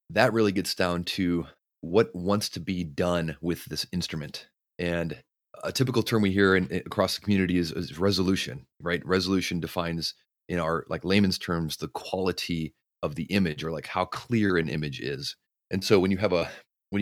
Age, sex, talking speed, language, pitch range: 30-49, male, 185 wpm, English, 80-100 Hz